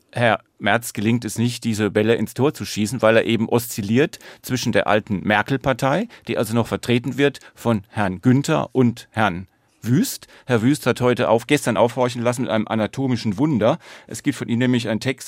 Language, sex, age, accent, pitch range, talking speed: German, male, 40-59, German, 110-130 Hz, 190 wpm